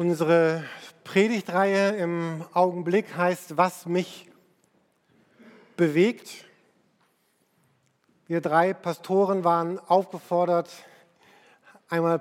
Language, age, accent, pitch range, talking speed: German, 50-69, German, 170-195 Hz, 70 wpm